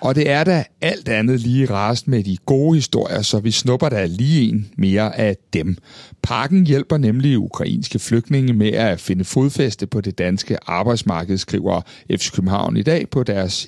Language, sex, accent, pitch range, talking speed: Danish, male, native, 105-145 Hz, 185 wpm